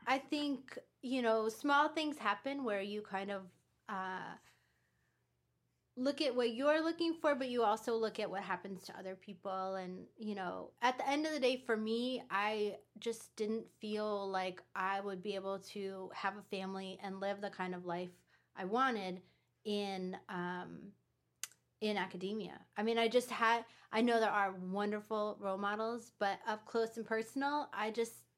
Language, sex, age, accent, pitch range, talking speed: English, female, 20-39, American, 190-225 Hz, 175 wpm